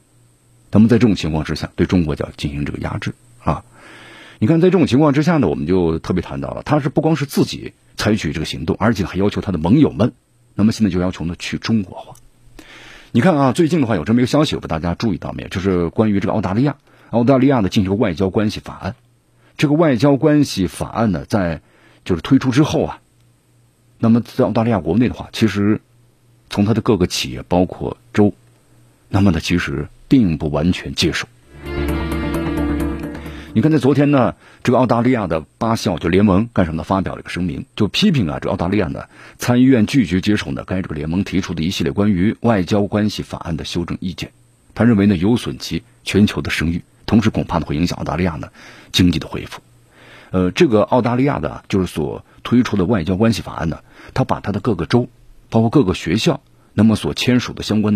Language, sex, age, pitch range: Chinese, male, 50-69, 90-120 Hz